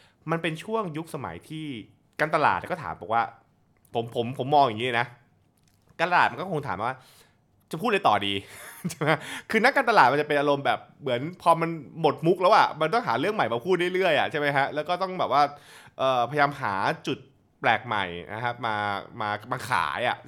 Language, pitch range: Thai, 120-165 Hz